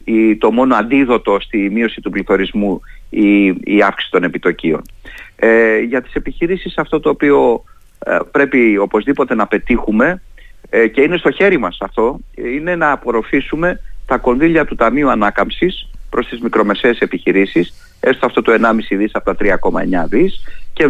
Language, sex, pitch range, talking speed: Greek, male, 110-165 Hz, 155 wpm